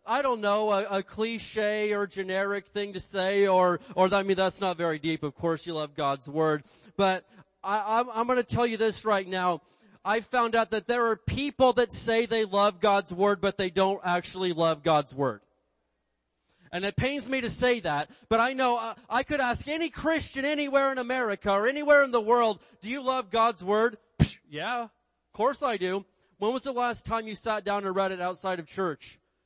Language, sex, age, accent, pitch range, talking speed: English, male, 30-49, American, 190-250 Hz, 215 wpm